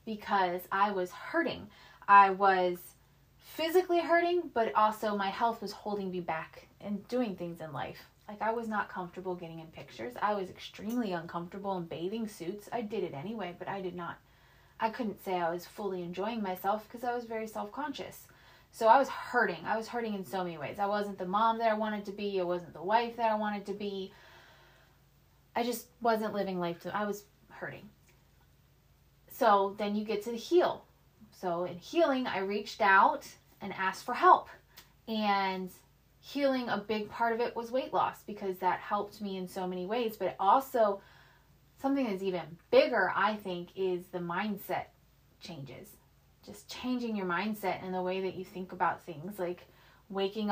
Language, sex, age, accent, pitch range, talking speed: English, female, 20-39, American, 180-225 Hz, 185 wpm